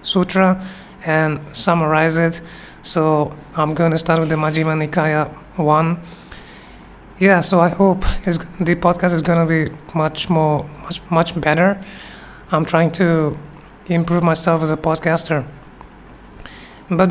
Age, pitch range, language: 20-39, 160-175 Hz, English